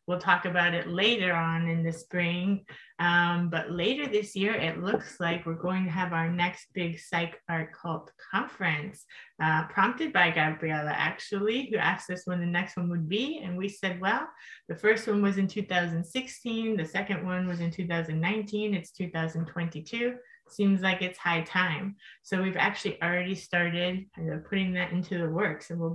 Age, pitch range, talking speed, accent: 20-39, 170-195 Hz, 180 wpm, American